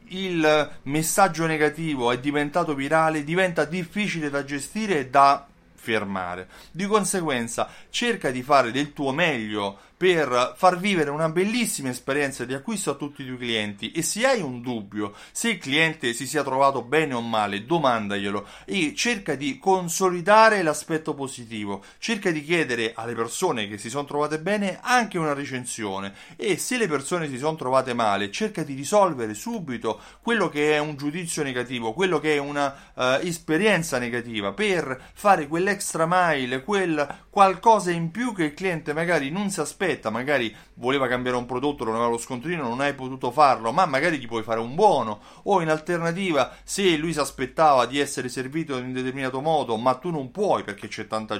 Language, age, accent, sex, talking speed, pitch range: Italian, 30-49, native, male, 175 wpm, 125-175 Hz